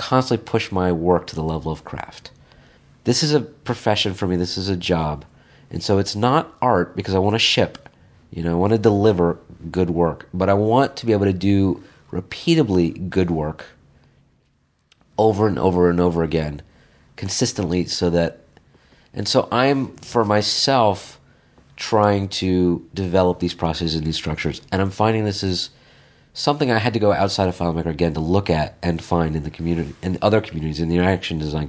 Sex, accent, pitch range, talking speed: male, American, 85-105 Hz, 185 wpm